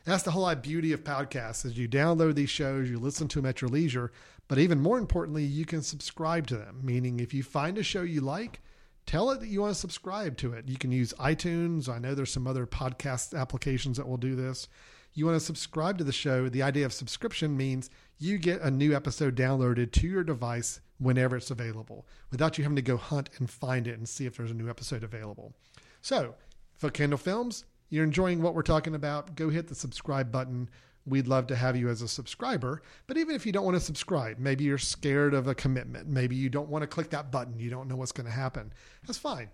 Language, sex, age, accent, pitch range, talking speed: English, male, 40-59, American, 130-160 Hz, 235 wpm